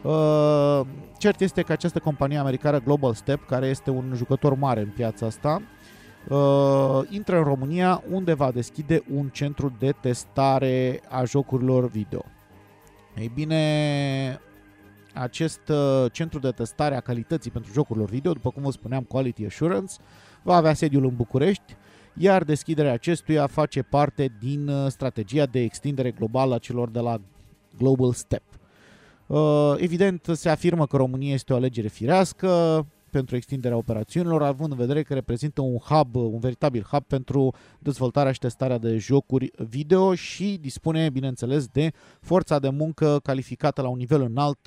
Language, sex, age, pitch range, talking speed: Romanian, male, 30-49, 125-150 Hz, 150 wpm